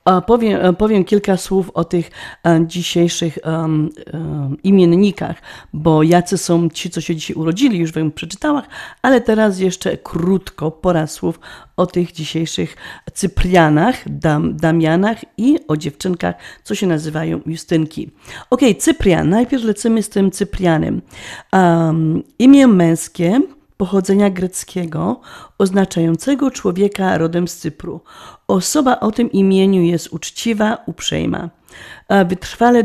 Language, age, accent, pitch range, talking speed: Polish, 40-59, native, 165-205 Hz, 120 wpm